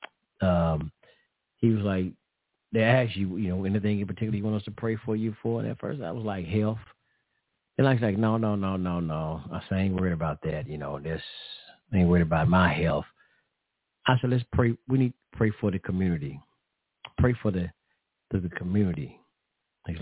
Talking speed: 205 wpm